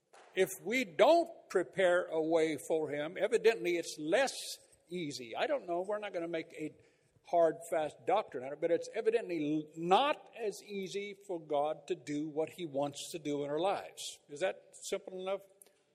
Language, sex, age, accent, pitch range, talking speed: English, male, 60-79, American, 155-255 Hz, 180 wpm